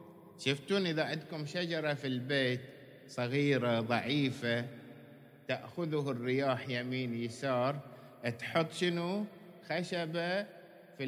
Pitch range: 125-210 Hz